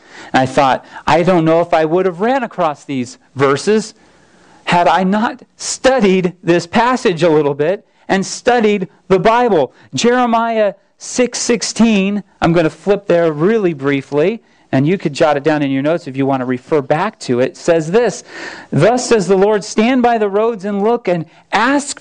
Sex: male